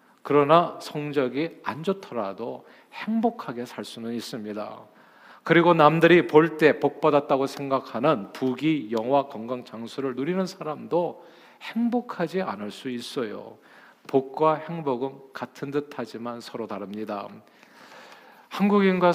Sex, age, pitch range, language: male, 40-59, 125-165 Hz, Korean